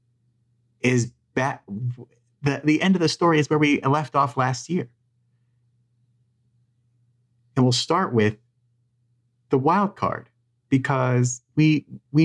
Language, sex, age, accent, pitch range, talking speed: English, male, 30-49, American, 110-125 Hz, 120 wpm